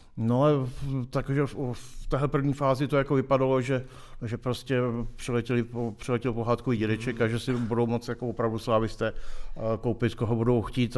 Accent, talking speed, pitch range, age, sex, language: native, 155 wpm, 110-125 Hz, 50-69, male, Czech